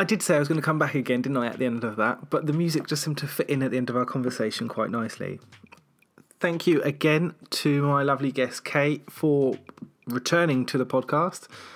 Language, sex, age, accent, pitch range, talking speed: English, male, 20-39, British, 130-155 Hz, 235 wpm